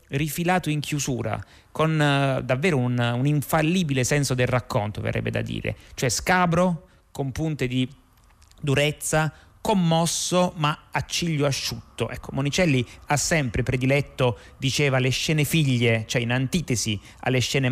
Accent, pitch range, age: native, 115-150 Hz, 30-49